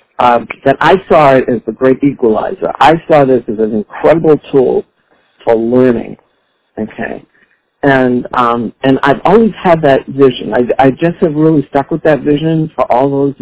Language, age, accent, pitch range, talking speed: English, 60-79, American, 115-140 Hz, 175 wpm